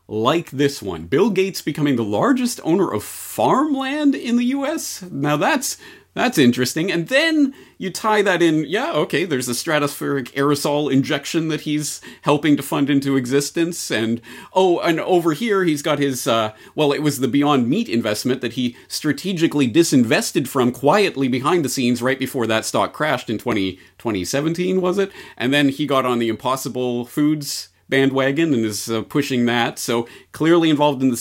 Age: 30-49